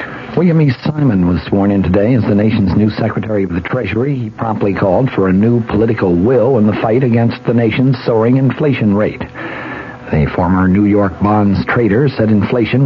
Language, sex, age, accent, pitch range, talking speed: English, male, 60-79, American, 100-120 Hz, 185 wpm